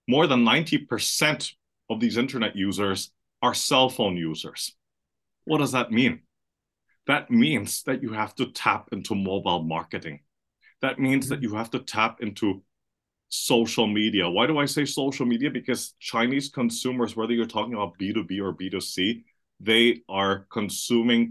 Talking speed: 150 wpm